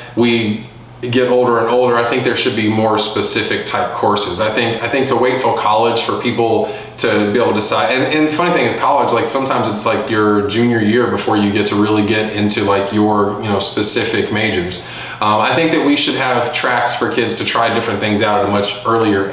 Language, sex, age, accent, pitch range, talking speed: English, male, 20-39, American, 105-120 Hz, 235 wpm